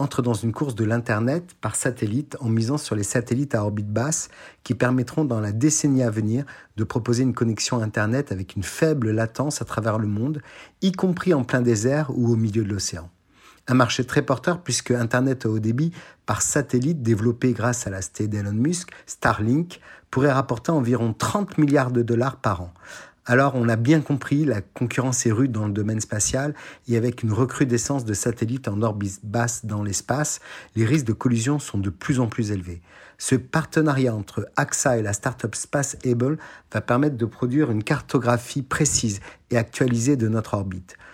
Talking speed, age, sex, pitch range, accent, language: 185 wpm, 50-69, male, 110-140 Hz, French, Italian